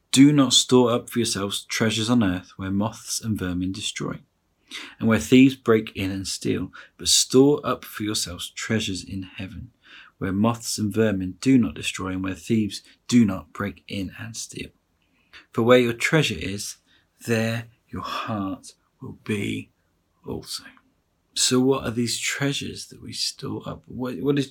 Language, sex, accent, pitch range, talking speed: English, male, British, 95-120 Hz, 165 wpm